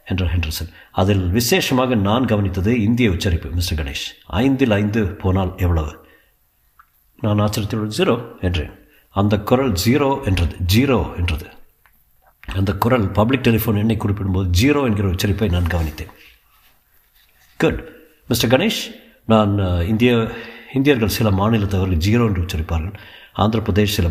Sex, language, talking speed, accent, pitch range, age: male, Tamil, 100 wpm, native, 95-115 Hz, 50-69